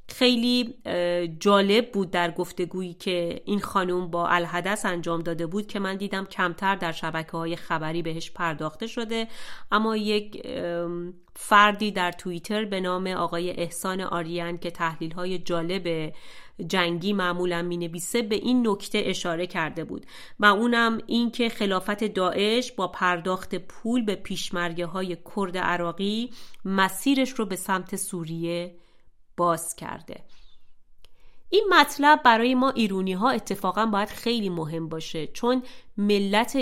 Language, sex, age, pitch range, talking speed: Persian, female, 30-49, 175-210 Hz, 130 wpm